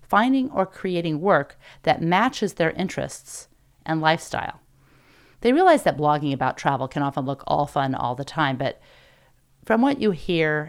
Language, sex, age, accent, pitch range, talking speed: English, female, 40-59, American, 135-185 Hz, 165 wpm